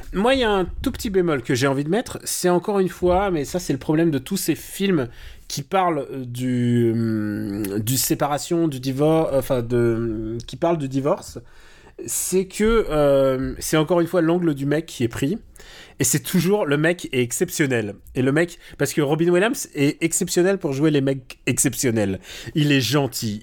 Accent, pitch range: French, 130-175 Hz